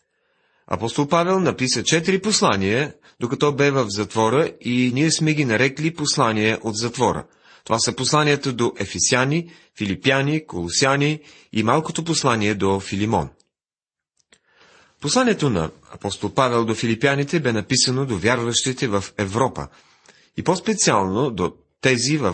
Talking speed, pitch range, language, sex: 125 wpm, 110-150 Hz, Bulgarian, male